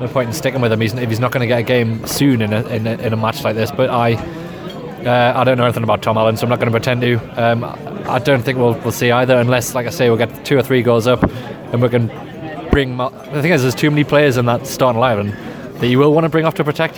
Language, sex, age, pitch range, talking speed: English, male, 20-39, 120-150 Hz, 300 wpm